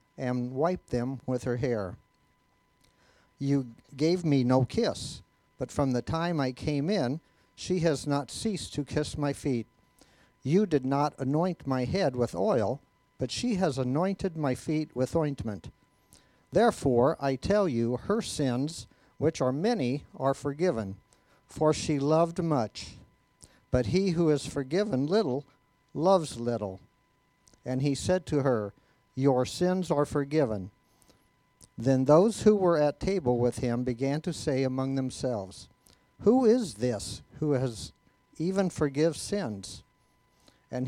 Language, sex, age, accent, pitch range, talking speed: English, male, 50-69, American, 120-155 Hz, 140 wpm